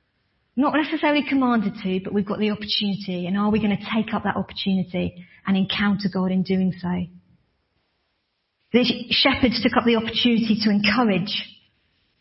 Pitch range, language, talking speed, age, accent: 195-240 Hz, English, 155 wpm, 40-59, British